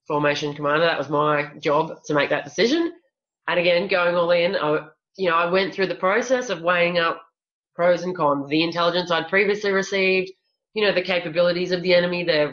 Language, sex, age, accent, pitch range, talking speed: English, female, 20-39, Australian, 150-180 Hz, 200 wpm